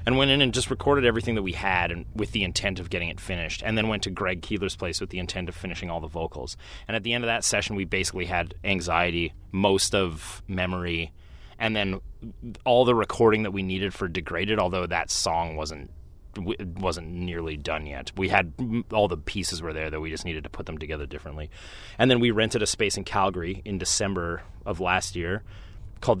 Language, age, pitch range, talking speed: English, 30-49, 85-105 Hz, 215 wpm